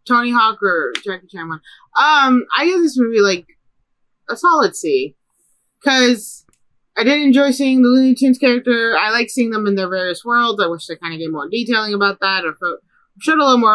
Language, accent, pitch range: English, American, 185-245 Hz